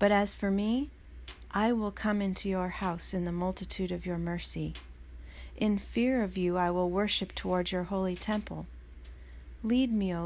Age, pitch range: 40-59, 165-215 Hz